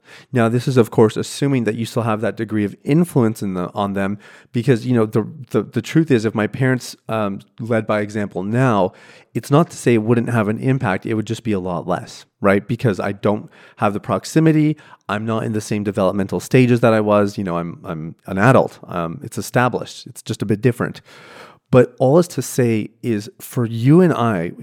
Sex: male